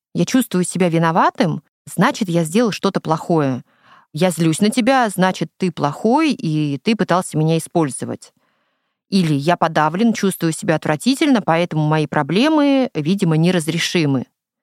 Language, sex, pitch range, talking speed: Russian, female, 165-225 Hz, 130 wpm